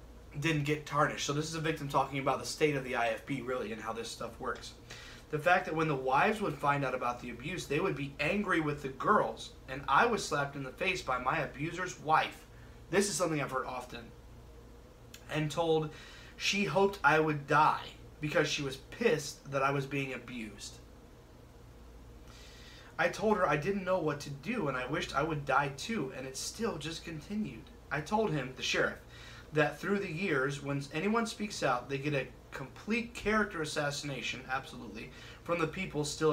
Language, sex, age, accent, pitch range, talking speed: English, male, 20-39, American, 130-165 Hz, 195 wpm